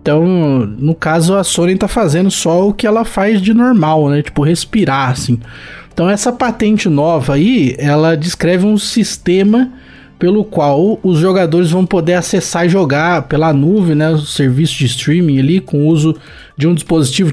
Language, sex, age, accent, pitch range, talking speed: Portuguese, male, 20-39, Brazilian, 135-195 Hz, 175 wpm